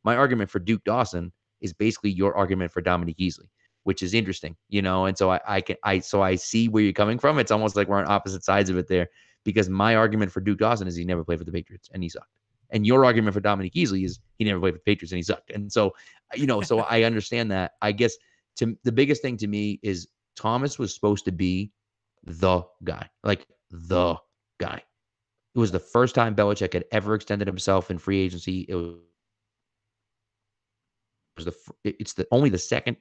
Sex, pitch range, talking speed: male, 95-115 Hz, 220 wpm